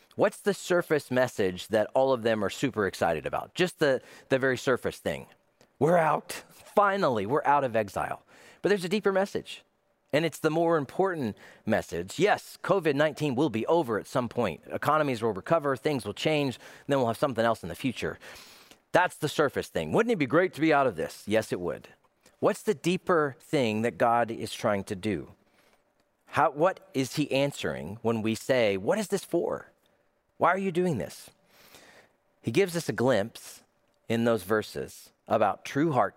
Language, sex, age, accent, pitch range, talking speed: English, male, 40-59, American, 110-150 Hz, 185 wpm